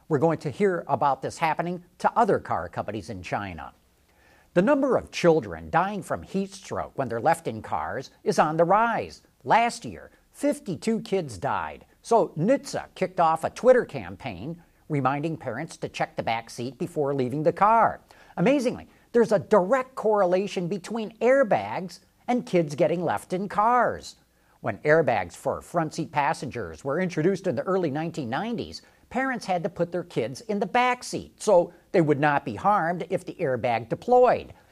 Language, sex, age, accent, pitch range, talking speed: English, male, 50-69, American, 155-215 Hz, 170 wpm